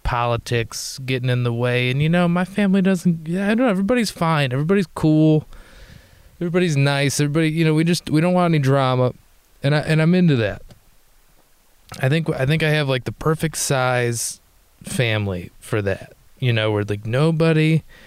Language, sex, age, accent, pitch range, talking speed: English, male, 20-39, American, 125-160 Hz, 185 wpm